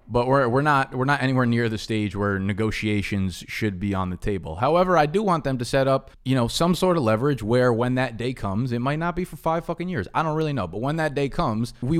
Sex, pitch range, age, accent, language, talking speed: male, 105-125 Hz, 20-39, American, English, 270 wpm